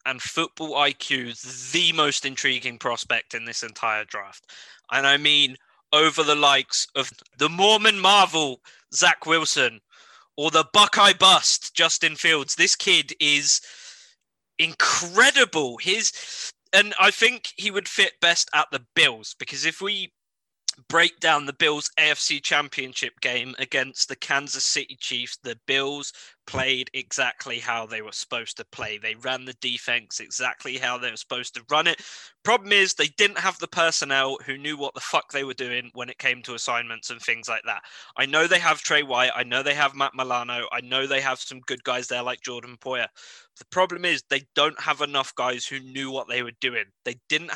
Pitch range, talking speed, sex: 130-160 Hz, 180 wpm, male